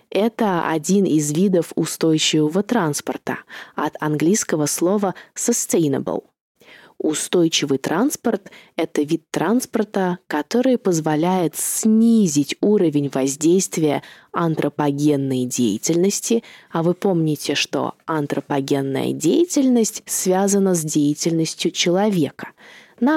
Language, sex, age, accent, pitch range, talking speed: Russian, female, 20-39, native, 160-210 Hz, 85 wpm